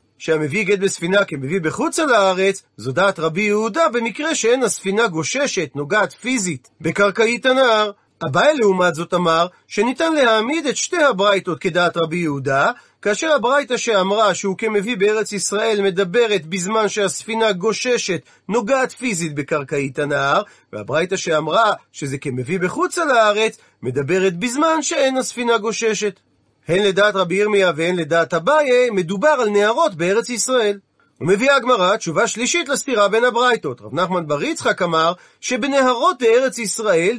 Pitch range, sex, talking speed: 180-255 Hz, male, 135 wpm